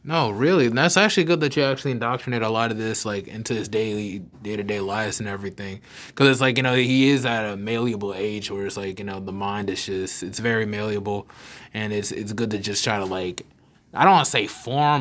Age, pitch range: 20-39, 95-115 Hz